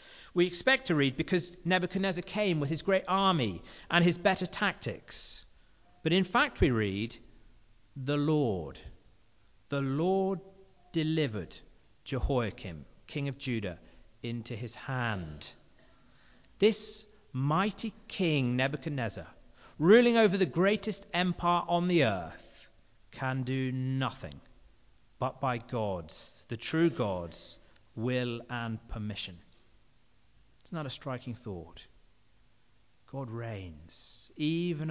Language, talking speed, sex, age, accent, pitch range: English, 110 wpm, male, 40-59, British, 110-150 Hz